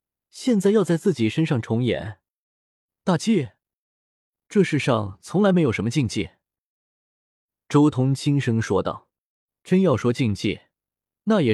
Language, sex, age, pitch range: Chinese, male, 20-39, 110-160 Hz